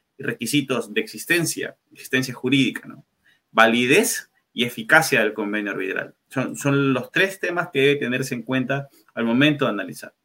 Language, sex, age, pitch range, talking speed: Spanish, male, 30-49, 130-175 Hz, 150 wpm